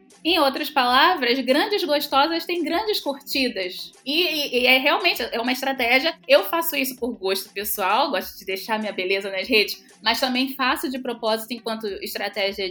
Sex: female